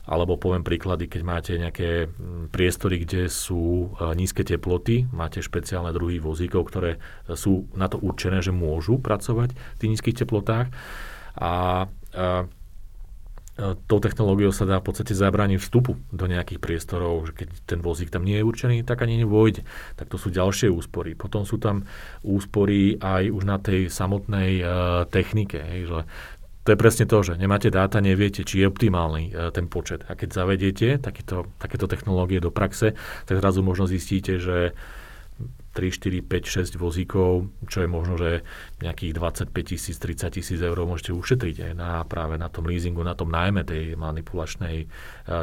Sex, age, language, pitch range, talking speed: male, 40-59, Slovak, 85-100 Hz, 165 wpm